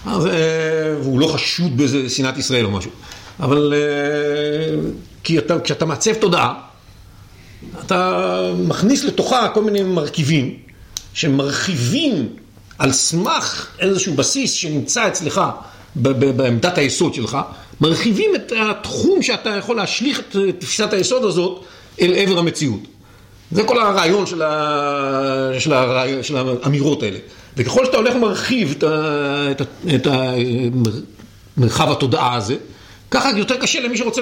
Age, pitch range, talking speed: 50-69, 130-180 Hz, 120 wpm